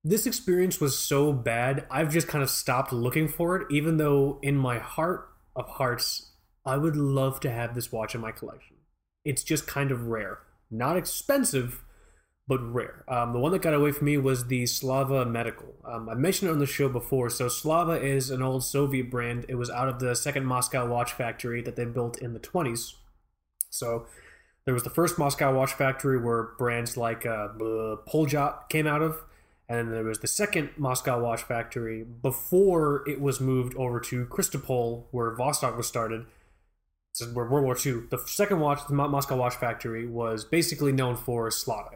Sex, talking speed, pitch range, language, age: male, 185 wpm, 120-150 Hz, English, 20-39